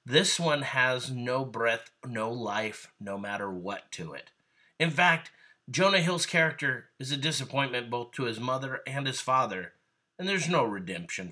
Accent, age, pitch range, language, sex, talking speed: American, 30-49, 115-150 Hz, English, male, 165 wpm